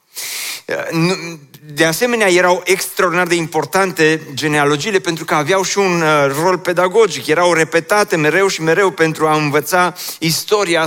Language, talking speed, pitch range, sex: Romanian, 125 wpm, 130-170 Hz, male